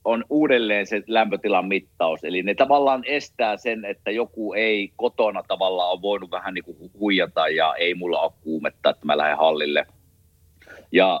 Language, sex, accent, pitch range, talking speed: Finnish, male, native, 90-125 Hz, 165 wpm